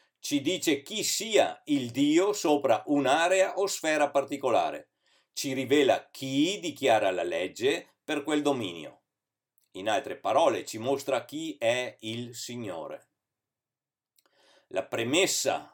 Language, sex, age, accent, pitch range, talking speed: Italian, male, 50-69, native, 125-185 Hz, 120 wpm